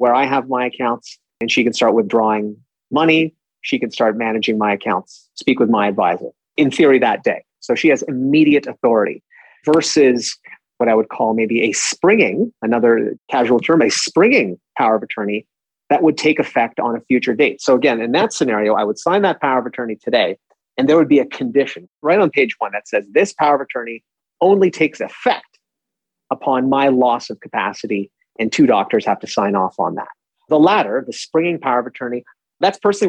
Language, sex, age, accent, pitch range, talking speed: English, male, 30-49, American, 120-155 Hz, 200 wpm